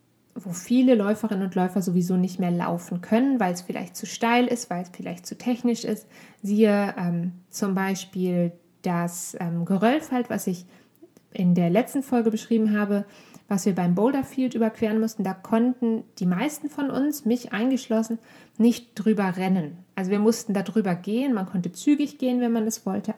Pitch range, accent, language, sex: 190-235 Hz, German, German, female